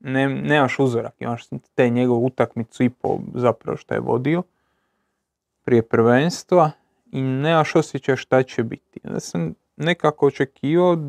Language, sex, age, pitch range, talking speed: Croatian, male, 30-49, 125-160 Hz, 140 wpm